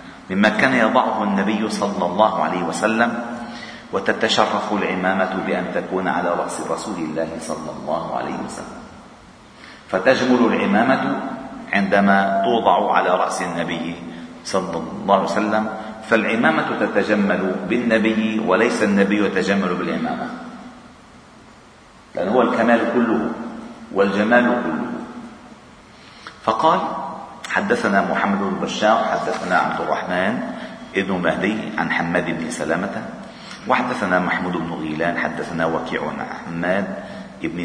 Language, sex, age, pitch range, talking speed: Arabic, male, 40-59, 85-110 Hz, 105 wpm